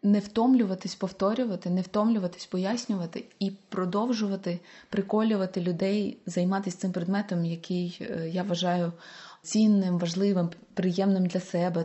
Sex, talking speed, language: female, 105 wpm, Ukrainian